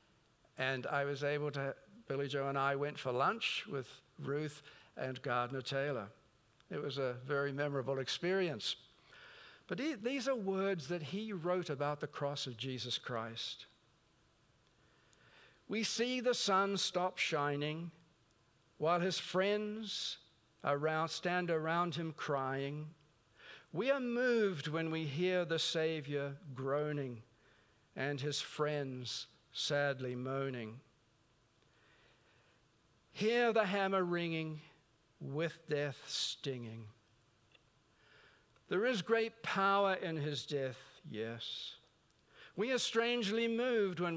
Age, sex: 60-79, male